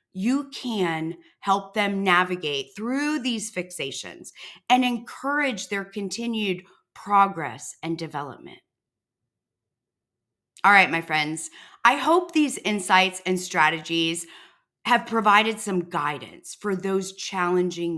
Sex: female